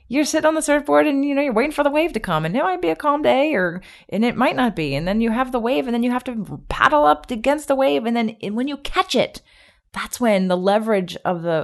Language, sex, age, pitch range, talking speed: English, female, 30-49, 170-250 Hz, 290 wpm